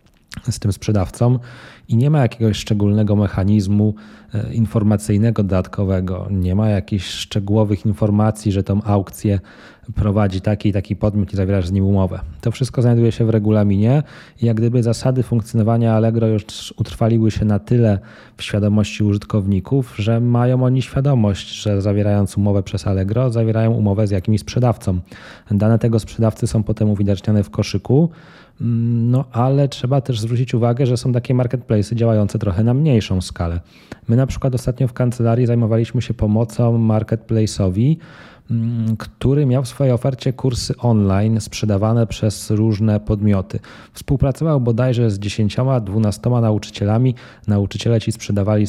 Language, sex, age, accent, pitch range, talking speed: Polish, male, 20-39, native, 100-120 Hz, 140 wpm